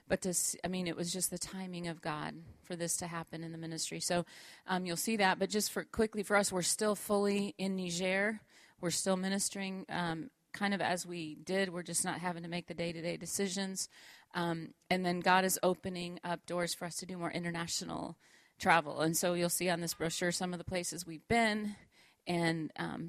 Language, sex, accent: English, female, American